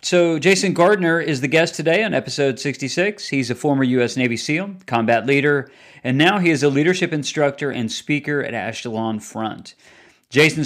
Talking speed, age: 175 wpm, 40-59